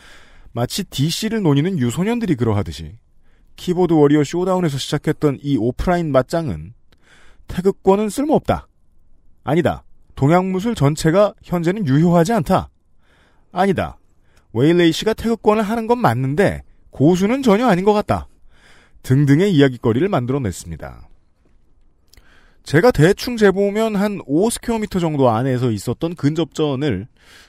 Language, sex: Korean, male